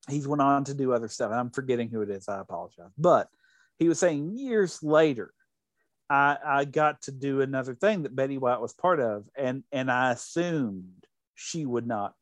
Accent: American